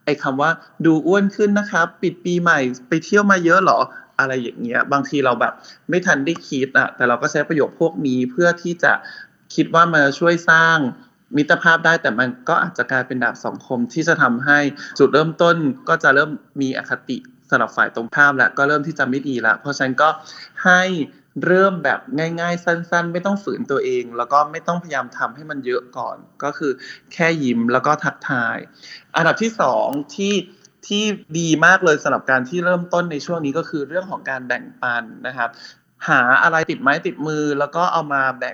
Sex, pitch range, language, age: male, 140-175 Hz, Thai, 20-39